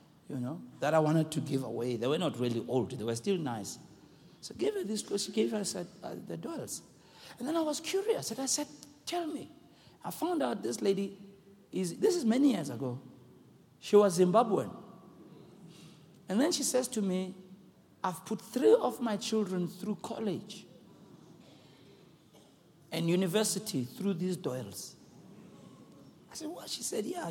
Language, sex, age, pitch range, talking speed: English, male, 60-79, 175-235 Hz, 175 wpm